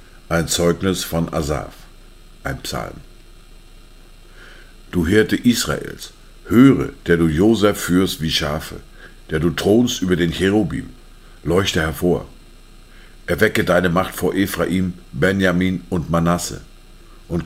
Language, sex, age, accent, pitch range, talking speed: German, male, 60-79, German, 80-90 Hz, 115 wpm